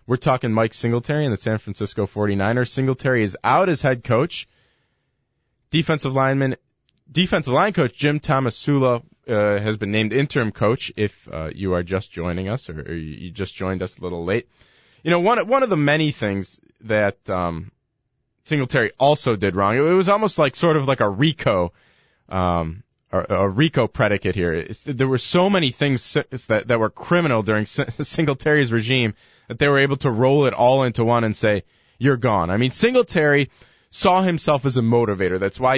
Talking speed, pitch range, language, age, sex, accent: 185 wpm, 105-145 Hz, English, 20-39, male, American